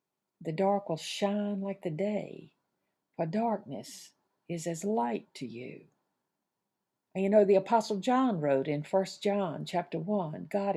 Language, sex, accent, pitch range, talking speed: English, female, American, 175-225 Hz, 150 wpm